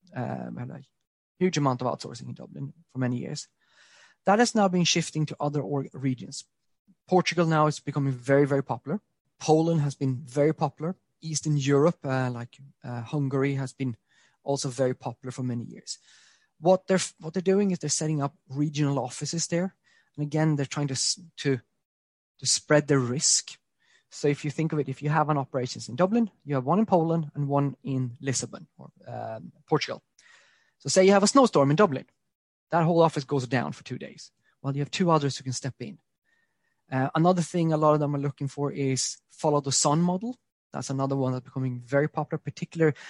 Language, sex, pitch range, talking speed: English, male, 135-165 Hz, 200 wpm